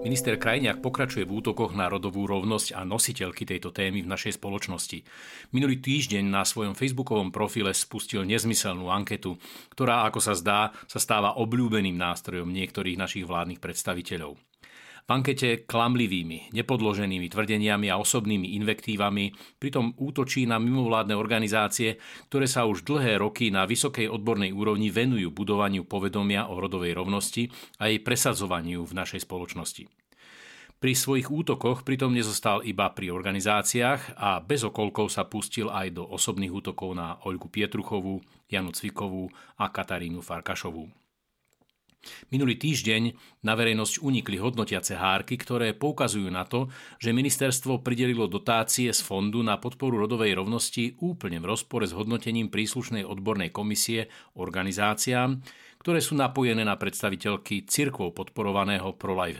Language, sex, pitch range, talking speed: Slovak, male, 95-120 Hz, 135 wpm